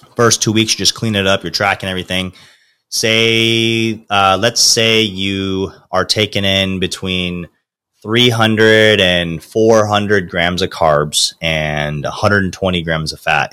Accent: American